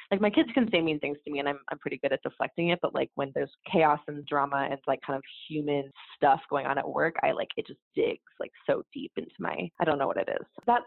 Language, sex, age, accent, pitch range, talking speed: English, female, 20-39, American, 145-180 Hz, 280 wpm